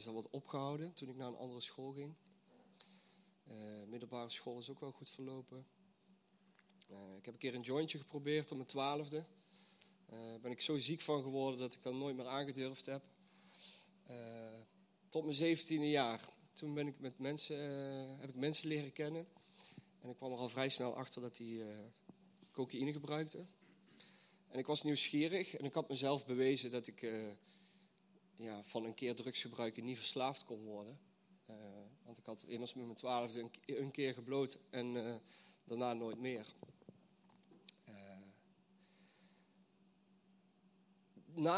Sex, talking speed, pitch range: male, 165 wpm, 125-175 Hz